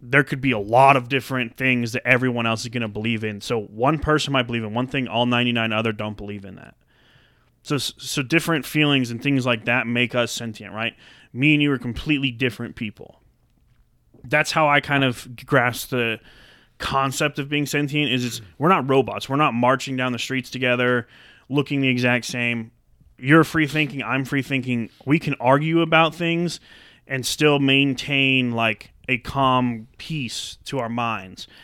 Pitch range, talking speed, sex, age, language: 115-140 Hz, 185 wpm, male, 20-39, English